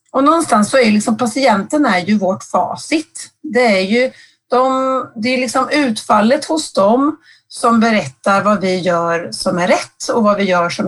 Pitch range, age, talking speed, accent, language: 210-270 Hz, 30-49, 190 wpm, native, Swedish